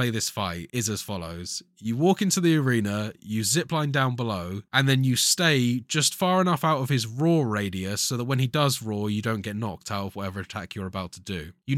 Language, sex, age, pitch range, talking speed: English, male, 20-39, 105-135 Hz, 235 wpm